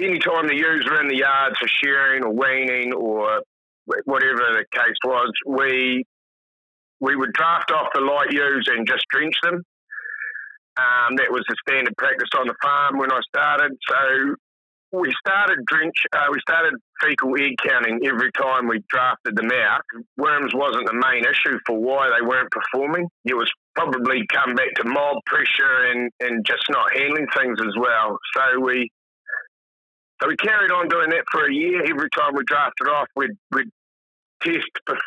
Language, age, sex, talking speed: English, 50-69, male, 175 wpm